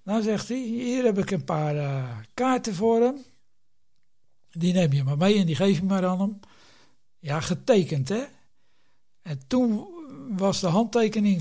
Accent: Dutch